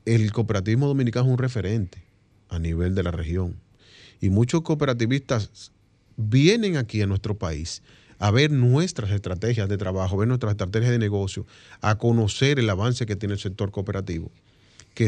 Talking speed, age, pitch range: 165 wpm, 30-49, 100-120 Hz